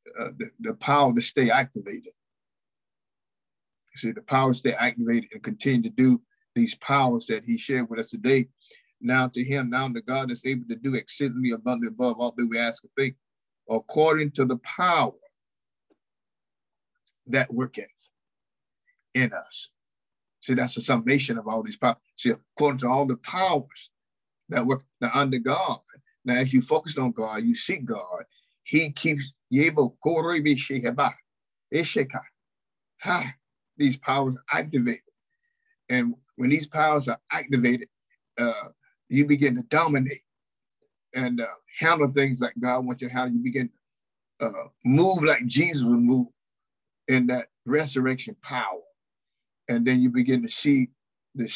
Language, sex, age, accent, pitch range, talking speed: English, male, 50-69, American, 125-155 Hz, 150 wpm